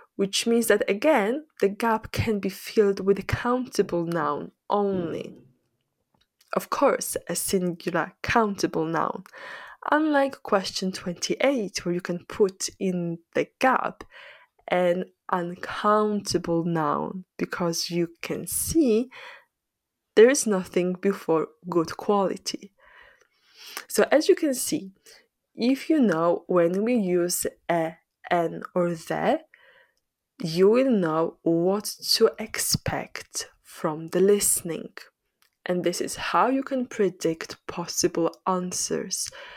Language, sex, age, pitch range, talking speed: English, female, 20-39, 175-245 Hz, 115 wpm